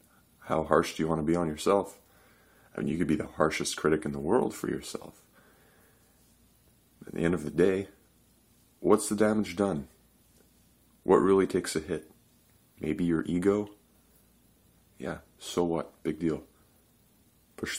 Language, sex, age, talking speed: English, male, 30-49, 155 wpm